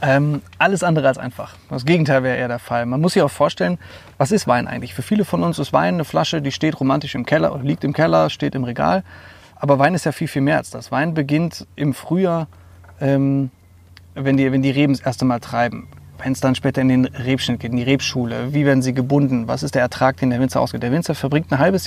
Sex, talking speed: male, 245 wpm